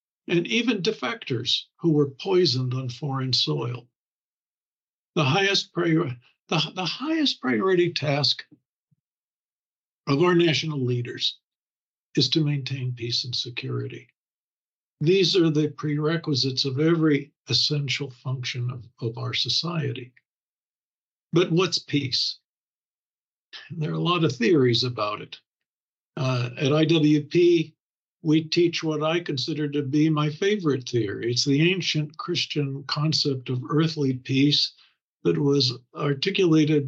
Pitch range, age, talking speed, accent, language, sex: 130-165 Hz, 60-79, 115 wpm, American, English, male